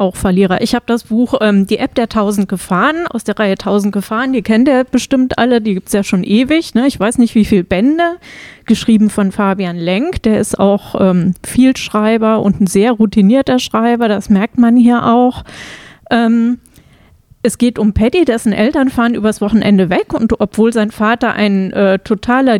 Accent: German